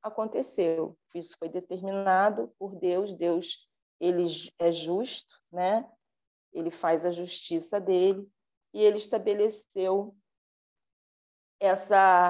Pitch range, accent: 175-225 Hz, Brazilian